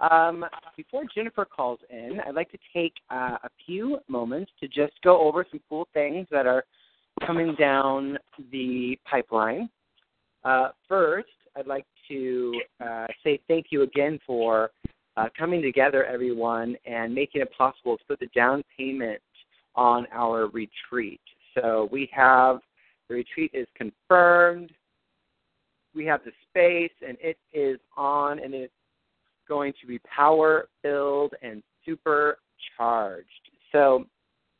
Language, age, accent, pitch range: English, 40-59, American, 120-155 Hz